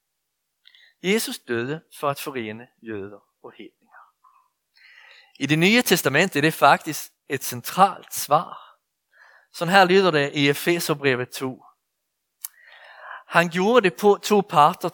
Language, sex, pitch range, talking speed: Danish, male, 150-210 Hz, 130 wpm